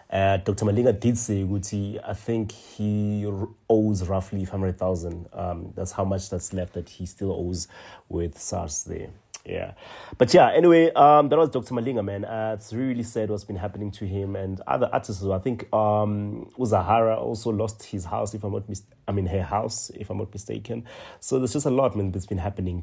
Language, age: English, 30-49